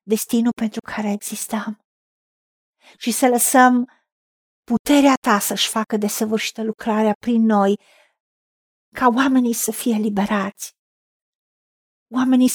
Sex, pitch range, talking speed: female, 220-260 Hz, 100 wpm